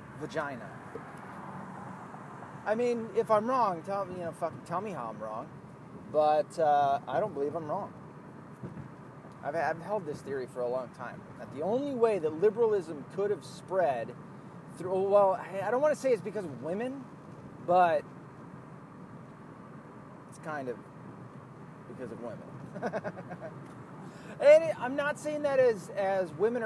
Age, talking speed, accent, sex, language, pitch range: 30-49, 150 wpm, American, male, English, 150-215 Hz